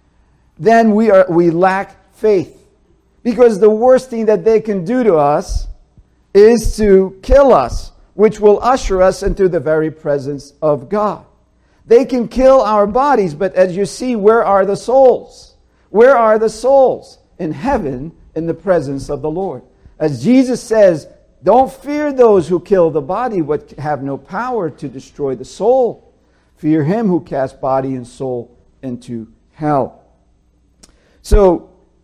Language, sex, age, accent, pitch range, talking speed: English, male, 50-69, American, 145-215 Hz, 155 wpm